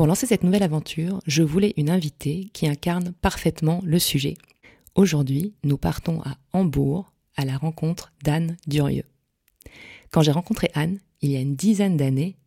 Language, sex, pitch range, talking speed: French, female, 150-190 Hz, 165 wpm